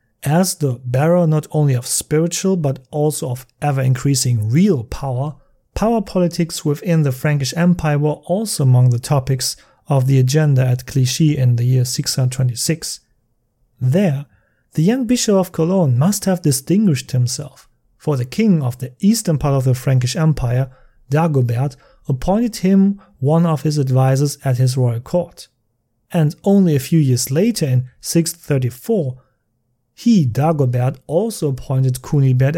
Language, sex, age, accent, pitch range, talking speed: English, male, 30-49, German, 125-165 Hz, 145 wpm